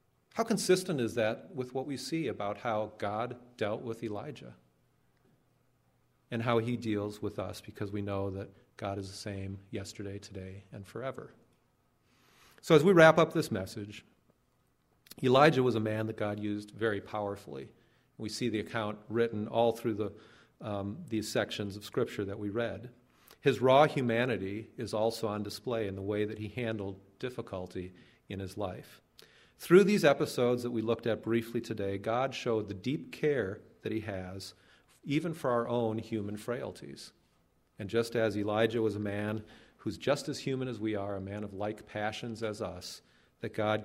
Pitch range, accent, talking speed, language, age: 105-120 Hz, American, 175 wpm, English, 40-59